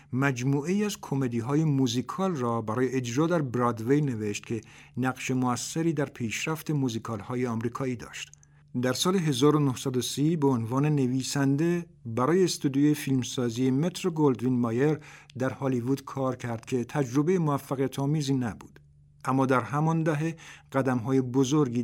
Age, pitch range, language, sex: 50-69, 120-150 Hz, Persian, male